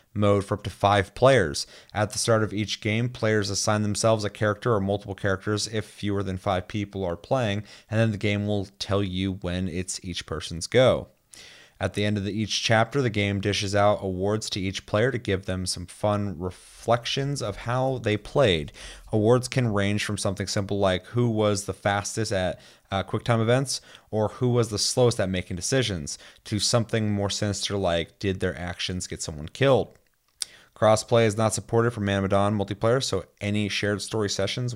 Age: 30-49